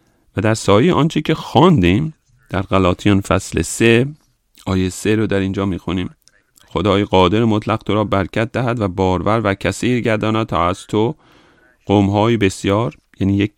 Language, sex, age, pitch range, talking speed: English, male, 40-59, 95-120 Hz, 165 wpm